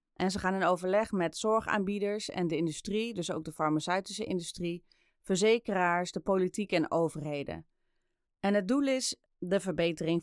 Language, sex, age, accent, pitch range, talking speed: Dutch, female, 30-49, Dutch, 165-205 Hz, 155 wpm